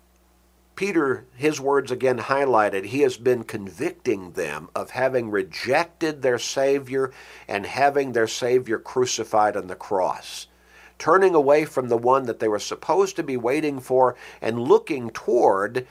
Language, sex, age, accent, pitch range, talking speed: English, male, 60-79, American, 120-155 Hz, 145 wpm